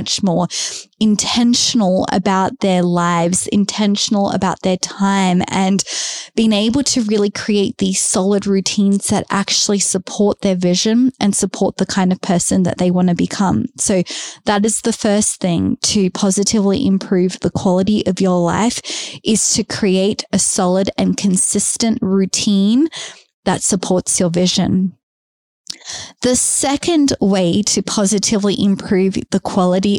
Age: 20-39